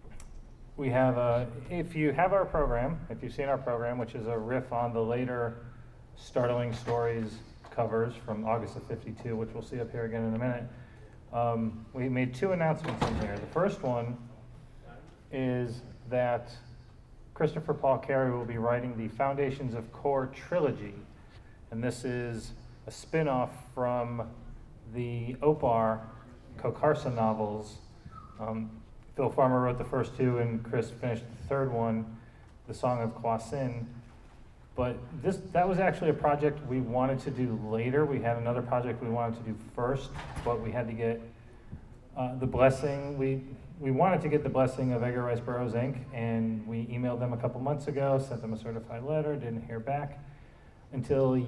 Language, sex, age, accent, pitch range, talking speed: English, male, 30-49, American, 115-130 Hz, 170 wpm